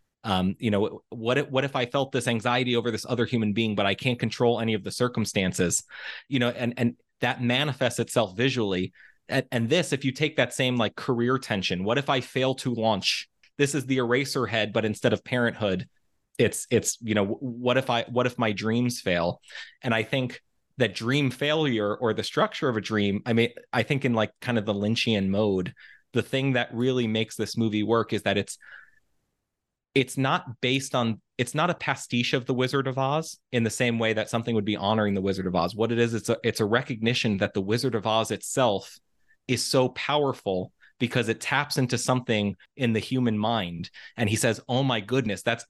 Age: 30-49